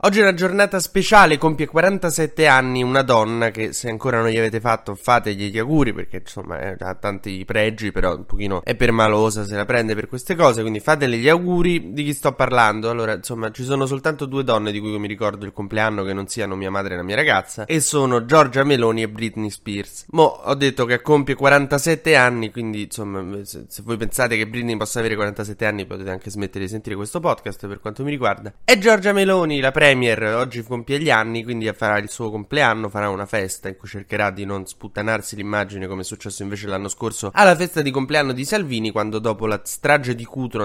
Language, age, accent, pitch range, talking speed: Italian, 20-39, native, 105-130 Hz, 215 wpm